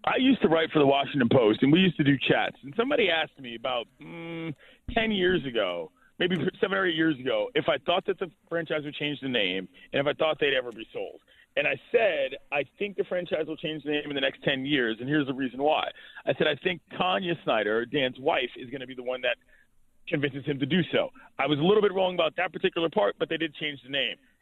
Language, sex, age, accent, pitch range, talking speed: English, male, 30-49, American, 145-190 Hz, 255 wpm